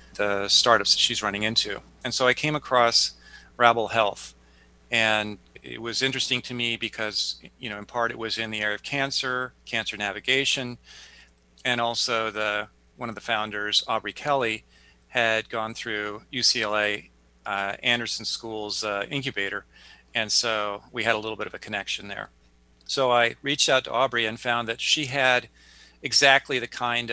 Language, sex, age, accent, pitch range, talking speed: English, male, 40-59, American, 105-120 Hz, 165 wpm